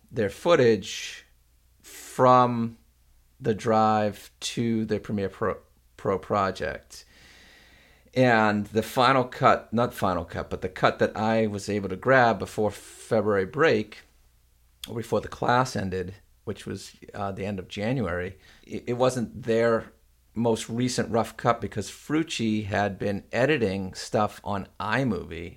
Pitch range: 90-115 Hz